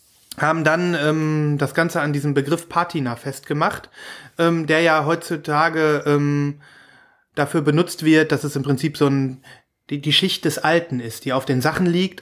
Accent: German